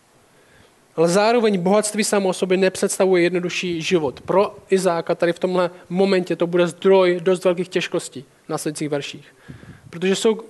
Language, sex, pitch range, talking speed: Czech, male, 160-205 Hz, 145 wpm